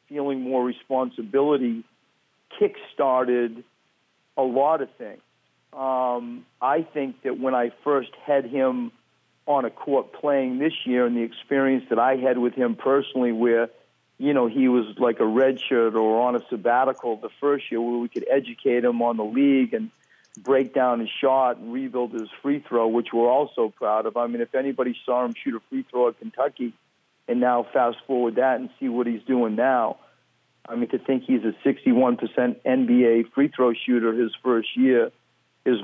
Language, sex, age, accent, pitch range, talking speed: English, male, 50-69, American, 120-140 Hz, 175 wpm